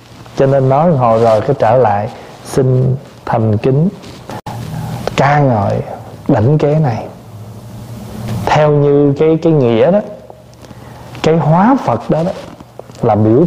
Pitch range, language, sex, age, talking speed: 120-165 Hz, Vietnamese, male, 20-39, 130 wpm